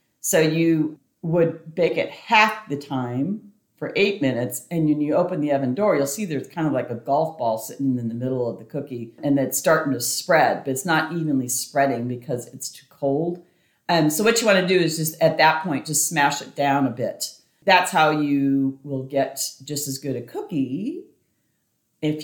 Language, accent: English, American